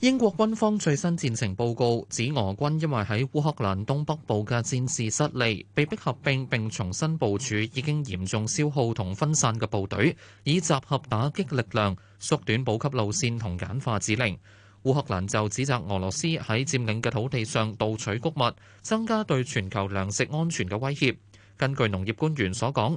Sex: male